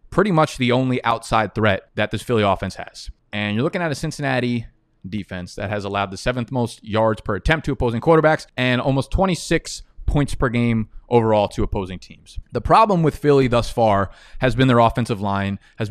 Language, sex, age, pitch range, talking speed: English, male, 20-39, 110-135 Hz, 195 wpm